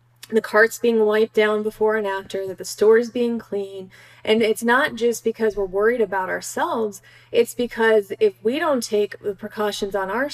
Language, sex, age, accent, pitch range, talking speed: English, female, 30-49, American, 200-235 Hz, 190 wpm